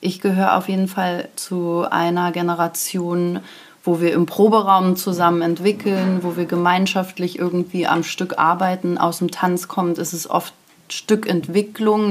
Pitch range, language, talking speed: 175-200 Hz, German, 145 wpm